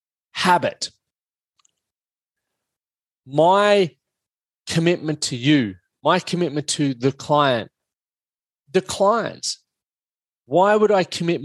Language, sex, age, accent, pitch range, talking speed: English, male, 20-39, Australian, 125-150 Hz, 85 wpm